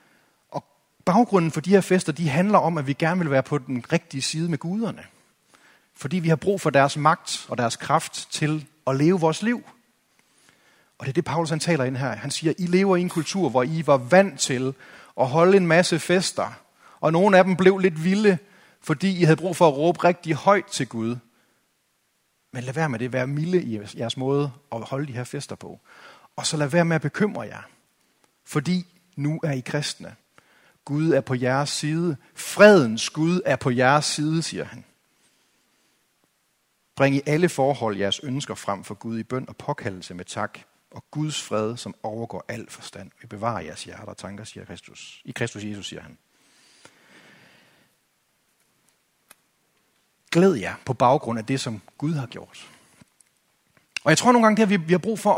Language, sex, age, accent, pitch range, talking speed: Danish, male, 30-49, native, 130-175 Hz, 190 wpm